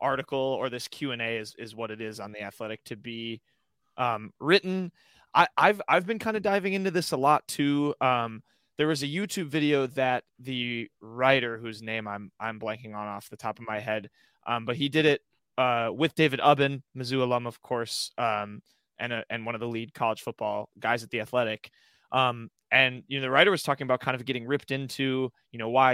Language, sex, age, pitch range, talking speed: English, male, 20-39, 120-155 Hz, 215 wpm